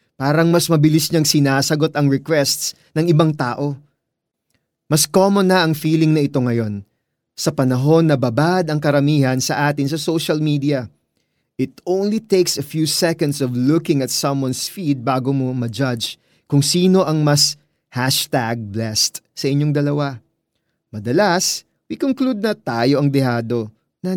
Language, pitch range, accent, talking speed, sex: Filipino, 130-165 Hz, native, 150 wpm, male